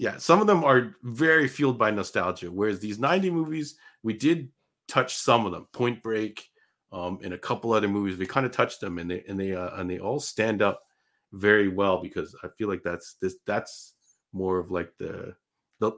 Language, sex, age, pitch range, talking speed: English, male, 30-49, 90-120 Hz, 210 wpm